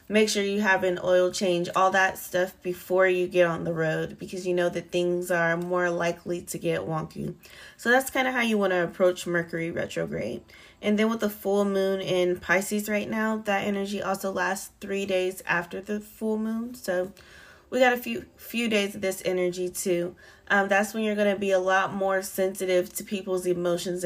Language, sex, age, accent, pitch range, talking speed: English, female, 20-39, American, 175-210 Hz, 205 wpm